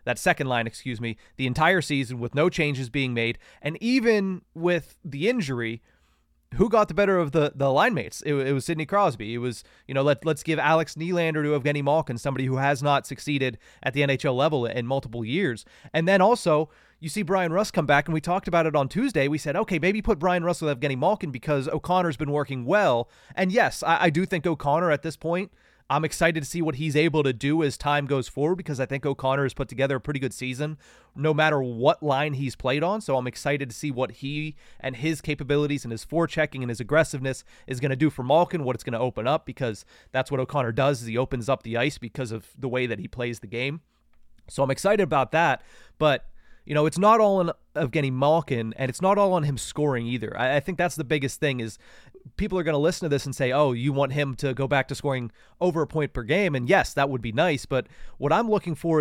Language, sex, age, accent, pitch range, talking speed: English, male, 30-49, American, 130-165 Hz, 245 wpm